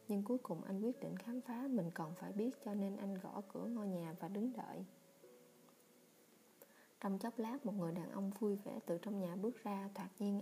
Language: Vietnamese